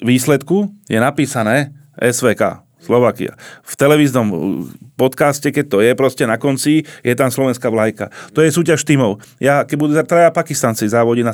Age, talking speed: 30-49, 160 wpm